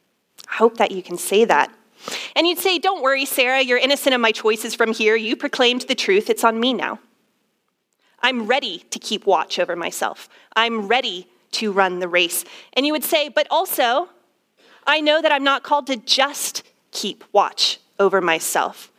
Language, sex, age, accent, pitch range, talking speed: English, female, 30-49, American, 200-270 Hz, 185 wpm